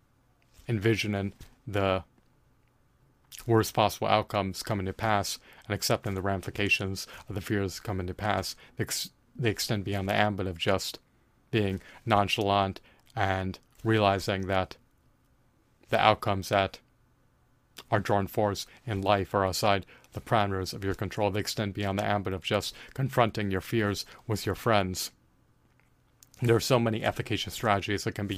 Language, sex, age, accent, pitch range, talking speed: English, male, 30-49, American, 95-115 Hz, 145 wpm